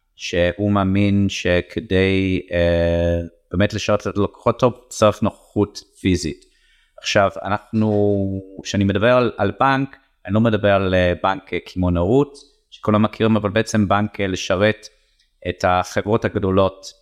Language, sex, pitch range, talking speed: Hebrew, male, 90-110 Hz, 130 wpm